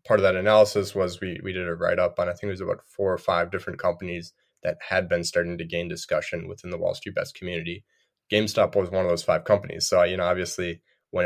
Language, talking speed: English, 250 wpm